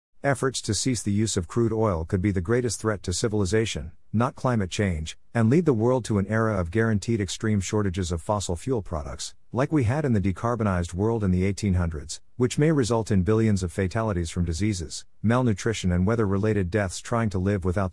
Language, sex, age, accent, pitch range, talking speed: English, male, 50-69, American, 90-115 Hz, 200 wpm